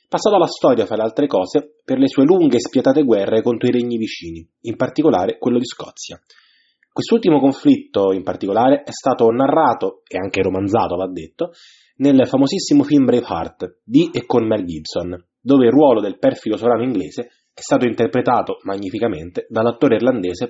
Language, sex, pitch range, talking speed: Italian, male, 115-175 Hz, 165 wpm